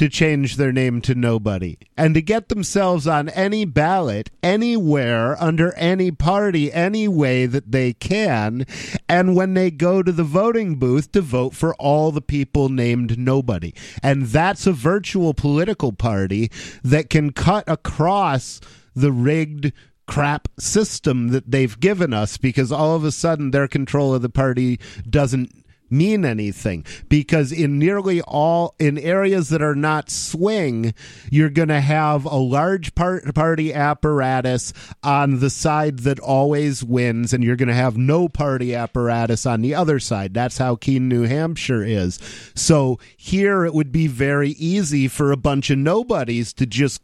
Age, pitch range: 40-59, 125-165 Hz